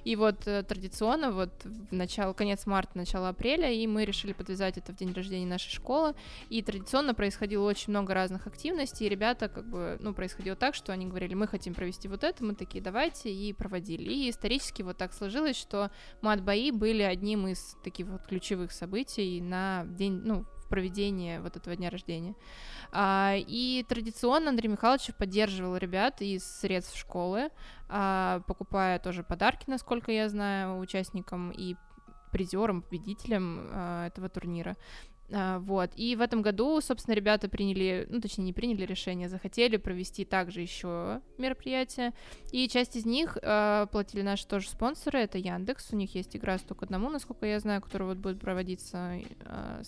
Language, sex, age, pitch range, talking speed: Russian, female, 20-39, 185-225 Hz, 160 wpm